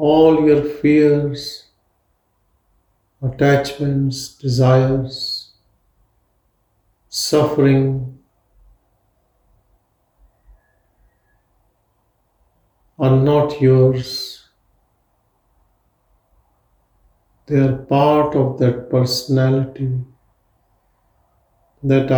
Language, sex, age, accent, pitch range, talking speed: English, male, 50-69, Indian, 95-140 Hz, 45 wpm